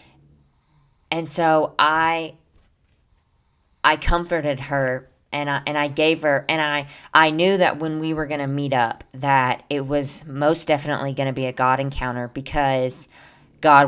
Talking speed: 160 wpm